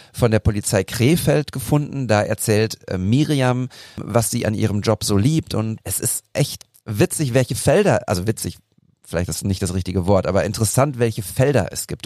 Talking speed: 180 wpm